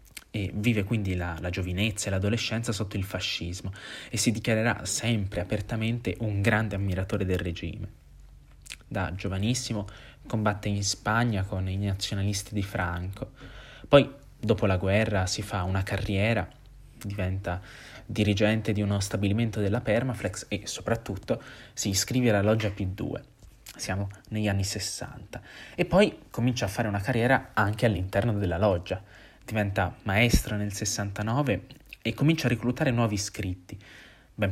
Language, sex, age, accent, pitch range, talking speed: Italian, male, 20-39, native, 95-115 Hz, 135 wpm